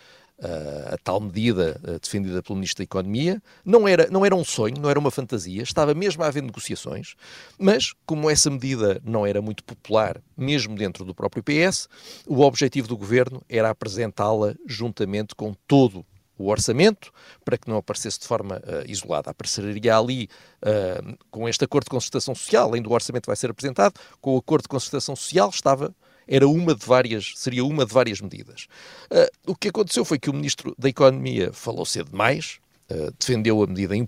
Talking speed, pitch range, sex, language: 165 wpm, 105-140 Hz, male, Portuguese